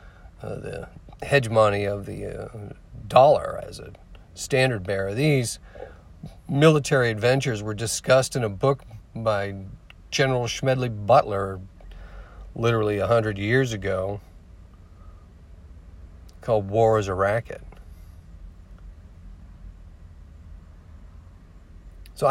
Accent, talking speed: American, 90 wpm